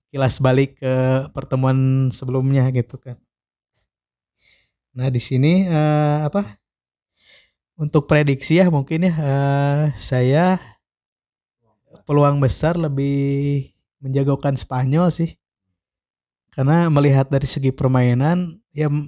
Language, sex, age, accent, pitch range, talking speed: Indonesian, male, 20-39, native, 135-150 Hz, 100 wpm